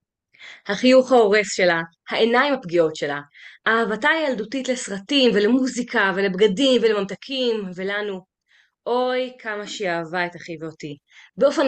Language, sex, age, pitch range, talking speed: Hebrew, female, 20-39, 180-260 Hz, 110 wpm